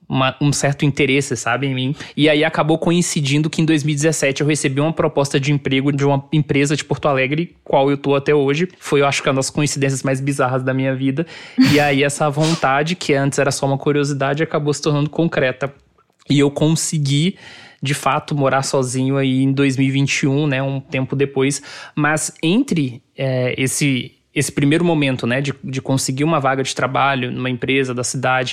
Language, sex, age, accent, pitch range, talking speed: Portuguese, male, 20-39, Brazilian, 135-155 Hz, 185 wpm